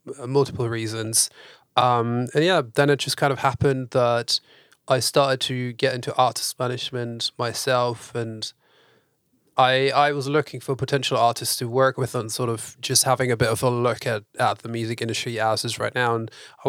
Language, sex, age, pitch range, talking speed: English, male, 20-39, 115-135 Hz, 185 wpm